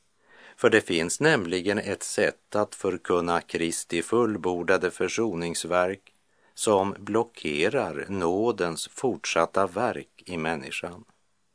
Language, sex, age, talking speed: Czech, male, 50-69, 95 wpm